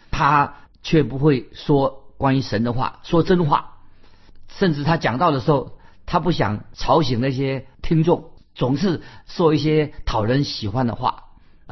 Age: 50-69